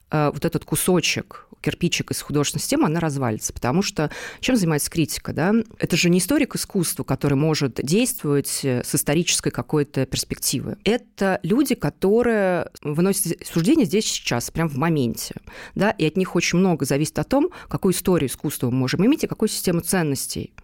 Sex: female